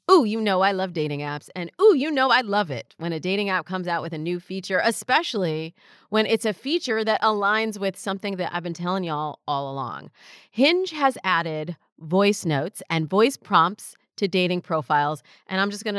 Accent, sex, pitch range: American, female, 160-220 Hz